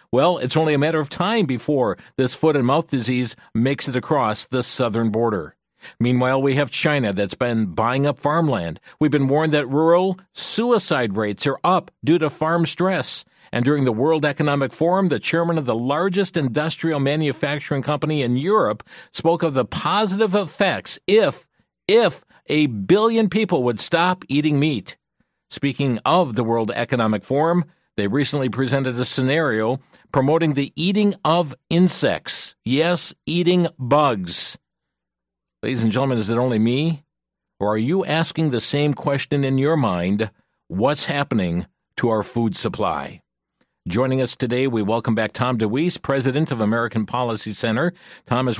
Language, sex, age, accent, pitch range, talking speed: English, male, 50-69, American, 120-155 Hz, 160 wpm